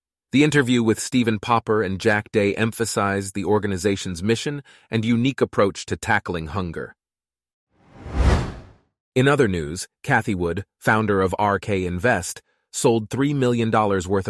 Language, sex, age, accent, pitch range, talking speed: English, male, 30-49, American, 95-115 Hz, 130 wpm